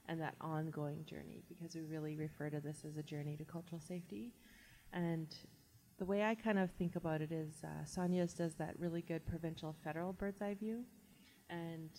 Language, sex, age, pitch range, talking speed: English, female, 30-49, 155-180 Hz, 190 wpm